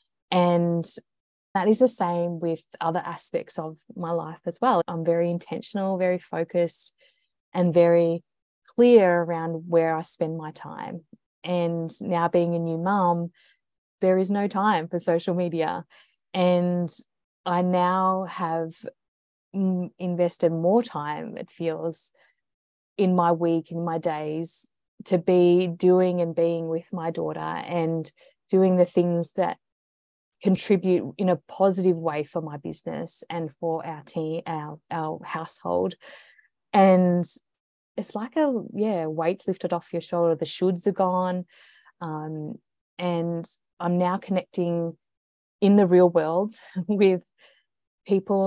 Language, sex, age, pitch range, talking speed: English, female, 20-39, 165-185 Hz, 135 wpm